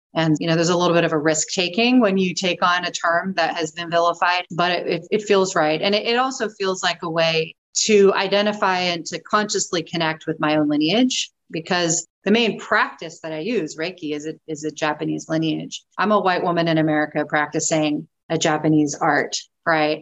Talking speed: 200 wpm